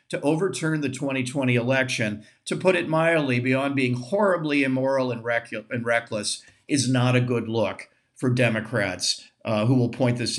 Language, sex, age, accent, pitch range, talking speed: English, male, 50-69, American, 120-150 Hz, 160 wpm